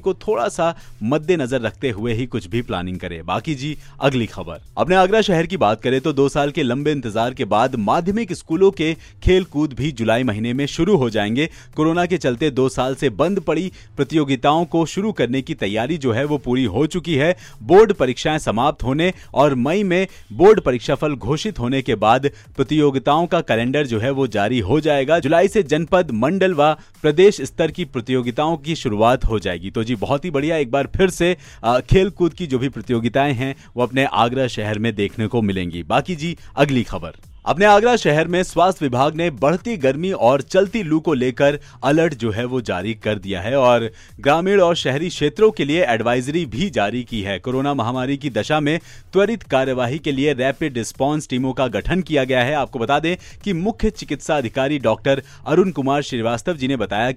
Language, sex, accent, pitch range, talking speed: Hindi, male, native, 125-165 Hz, 200 wpm